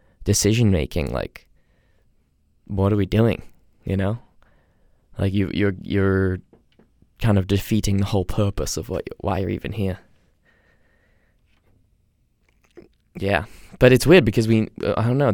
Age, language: 20-39, English